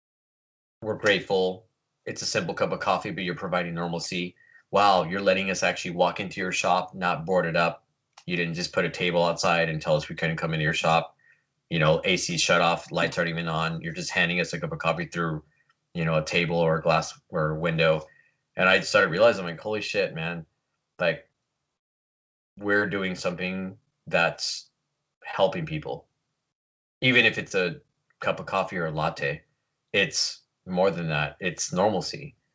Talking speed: 185 wpm